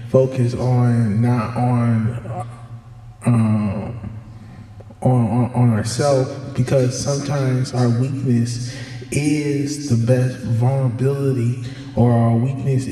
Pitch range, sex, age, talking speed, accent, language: 115-125 Hz, male, 20-39, 95 wpm, American, English